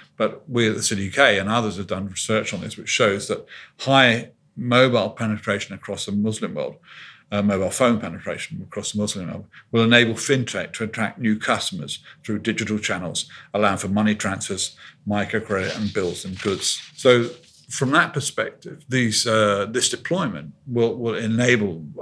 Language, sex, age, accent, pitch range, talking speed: English, male, 50-69, British, 100-115 Hz, 165 wpm